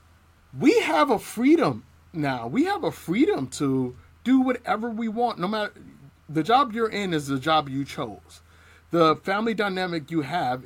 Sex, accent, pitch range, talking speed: male, American, 140-220 Hz, 170 wpm